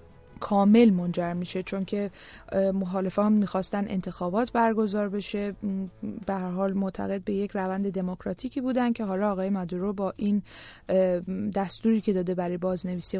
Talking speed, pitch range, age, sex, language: 135 wpm, 200-235 Hz, 20-39, female, English